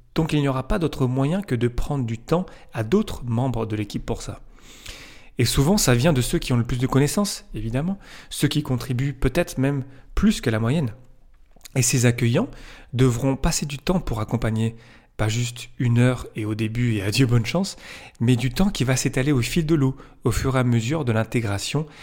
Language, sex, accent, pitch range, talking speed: French, male, French, 110-135 Hz, 210 wpm